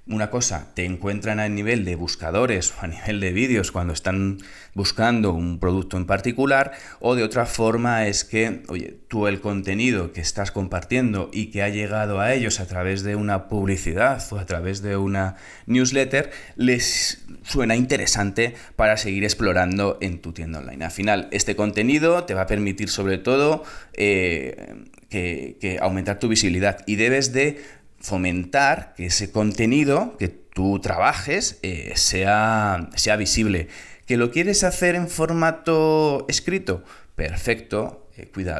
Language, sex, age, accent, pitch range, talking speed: Spanish, male, 20-39, Spanish, 95-115 Hz, 155 wpm